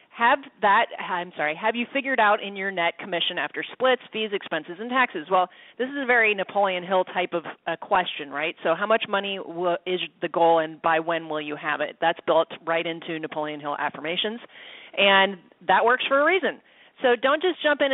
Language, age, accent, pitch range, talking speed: English, 30-49, American, 180-260 Hz, 205 wpm